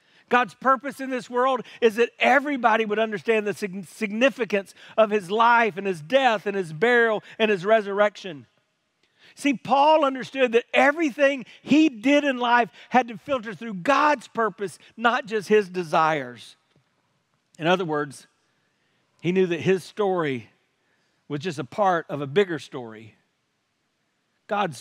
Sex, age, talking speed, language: male, 50-69, 145 wpm, English